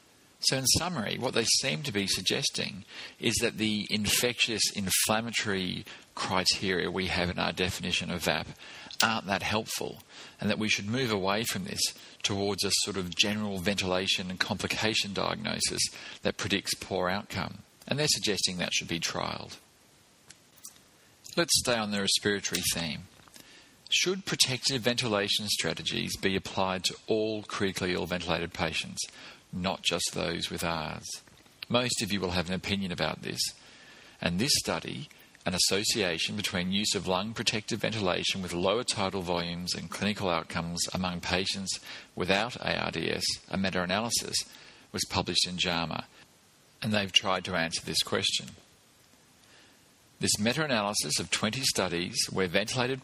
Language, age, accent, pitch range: English, 40-59, Australian, 90-110 Hz